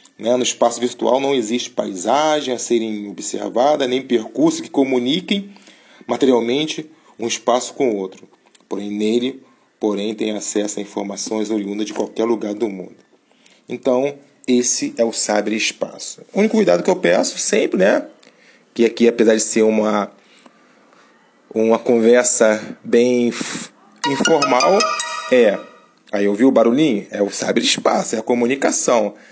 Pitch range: 110-130 Hz